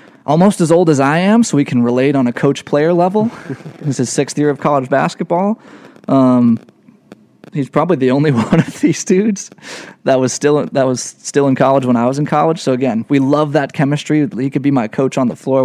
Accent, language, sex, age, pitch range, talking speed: American, English, male, 20-39, 125-180 Hz, 220 wpm